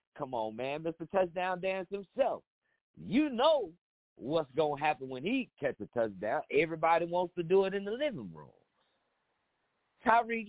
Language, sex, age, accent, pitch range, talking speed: English, male, 50-69, American, 120-185 Hz, 155 wpm